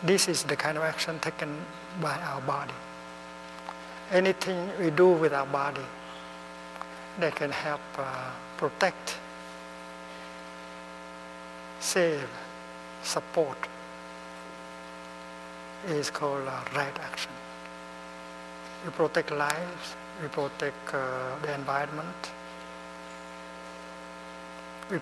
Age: 60-79